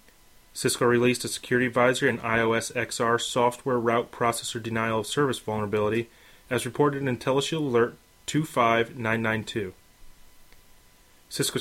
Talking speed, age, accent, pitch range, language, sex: 115 wpm, 30-49, American, 115-130 Hz, English, male